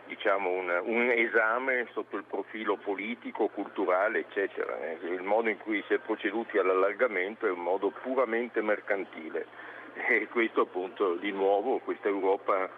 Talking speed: 135 wpm